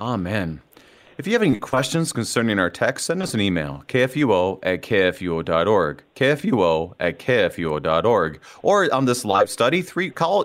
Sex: male